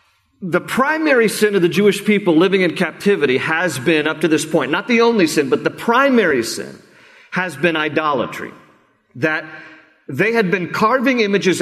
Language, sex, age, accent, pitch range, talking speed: English, male, 40-59, American, 175-240 Hz, 170 wpm